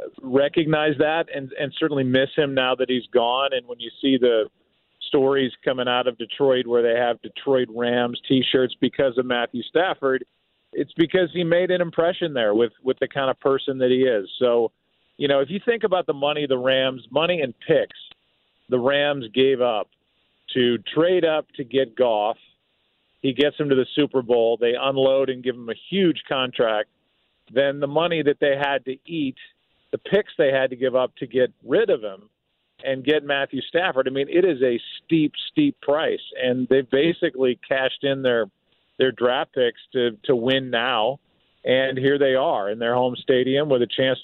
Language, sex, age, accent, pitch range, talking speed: English, male, 40-59, American, 125-145 Hz, 195 wpm